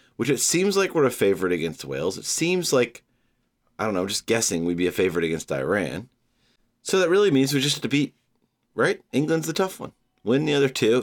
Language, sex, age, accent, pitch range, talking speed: English, male, 30-49, American, 85-135 Hz, 230 wpm